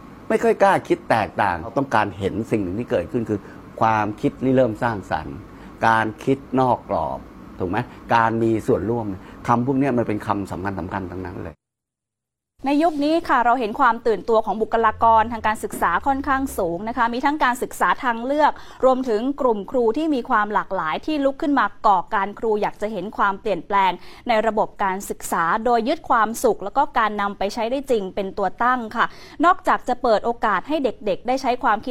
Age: 20-39